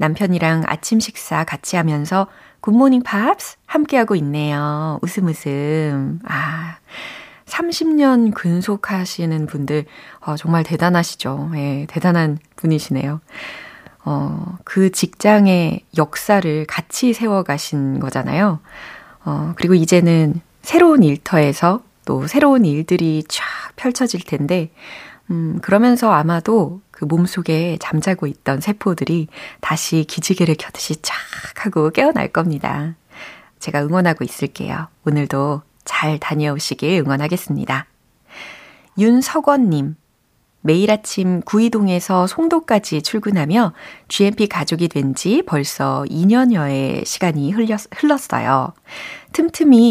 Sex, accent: female, native